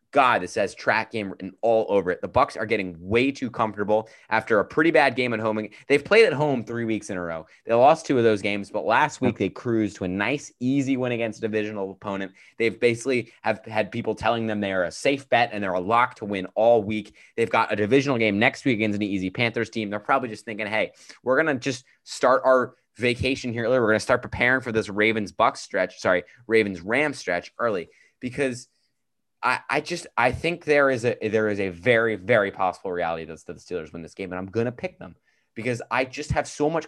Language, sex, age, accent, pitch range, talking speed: English, male, 20-39, American, 100-125 Hz, 240 wpm